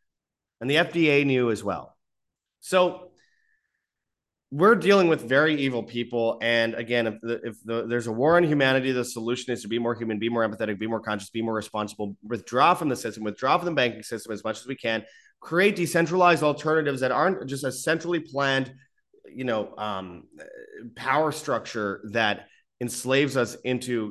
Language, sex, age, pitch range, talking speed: English, male, 30-49, 115-140 Hz, 180 wpm